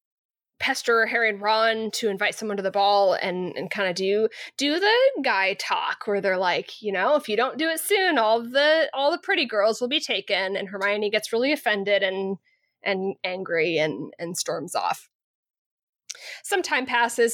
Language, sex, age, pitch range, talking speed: English, female, 20-39, 200-265 Hz, 185 wpm